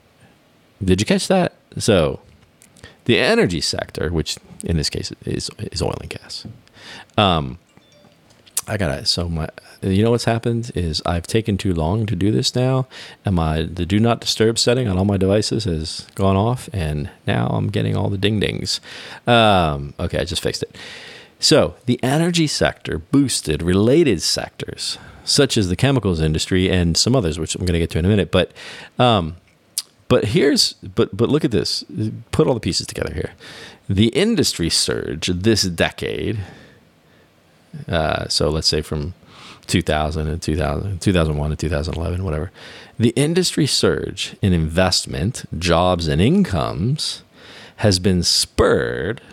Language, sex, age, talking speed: English, male, 40-59, 160 wpm